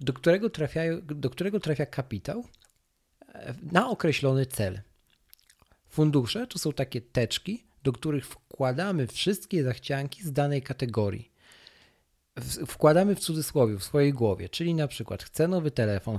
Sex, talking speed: male, 120 wpm